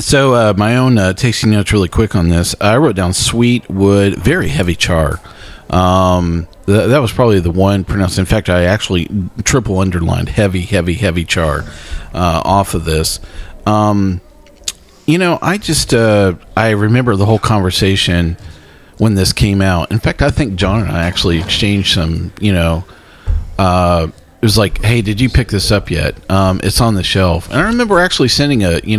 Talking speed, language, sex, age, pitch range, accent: 185 wpm, English, male, 40-59, 85-110 Hz, American